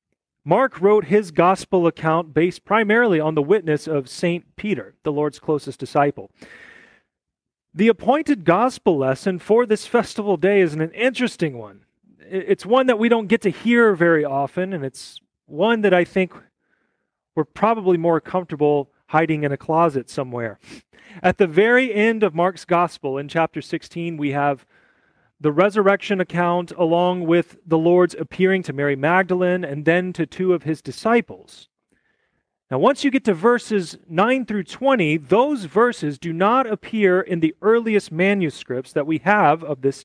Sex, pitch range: male, 160-210 Hz